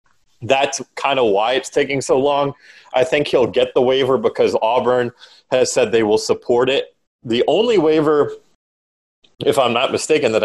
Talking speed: 170 wpm